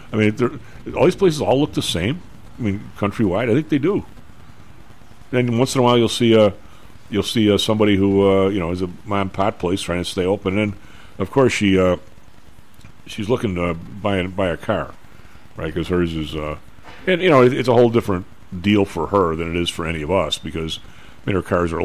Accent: American